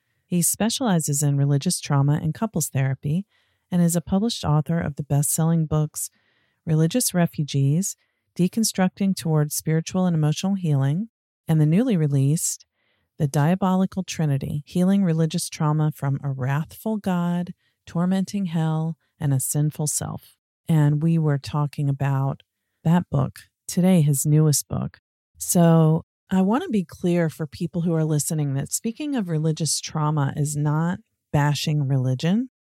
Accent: American